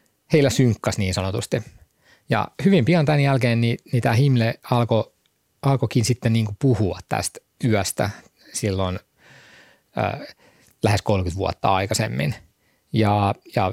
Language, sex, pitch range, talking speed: Finnish, male, 105-125 Hz, 120 wpm